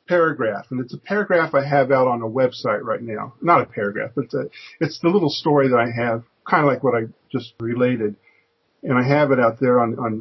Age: 50-69